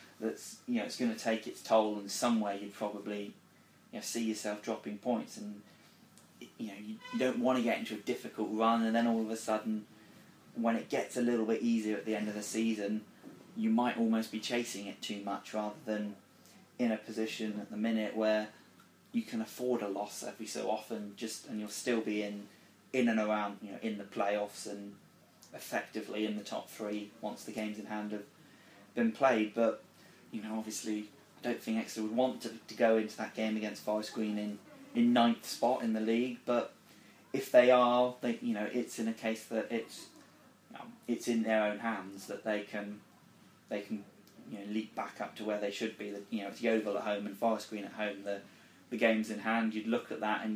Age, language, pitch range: 20-39, English, 105-115 Hz